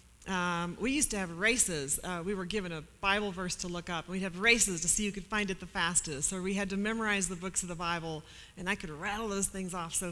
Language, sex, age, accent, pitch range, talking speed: English, female, 40-59, American, 170-220 Hz, 275 wpm